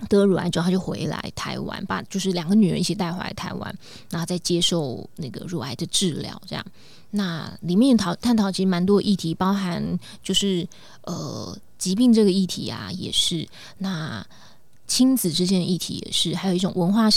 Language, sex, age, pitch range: Chinese, female, 20-39, 175-205 Hz